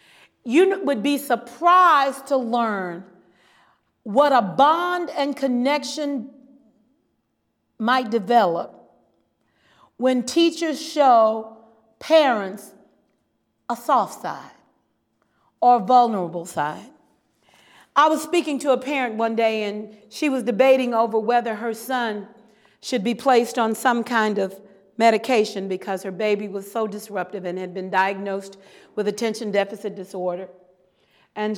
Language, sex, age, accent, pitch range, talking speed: English, female, 40-59, American, 205-285 Hz, 120 wpm